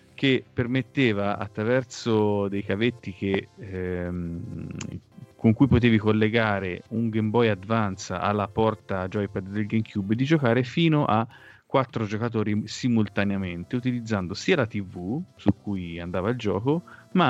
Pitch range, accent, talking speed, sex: 100-120 Hz, native, 130 wpm, male